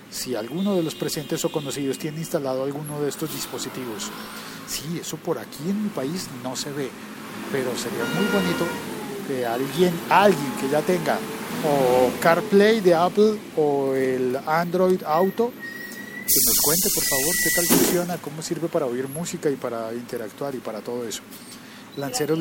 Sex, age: male, 40-59